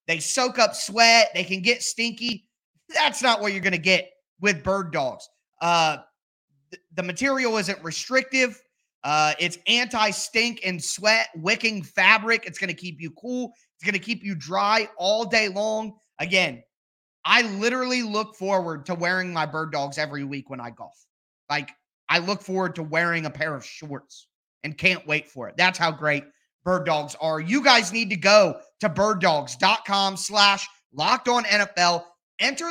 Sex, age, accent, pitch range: male, 30-49, American, 175-230 Hz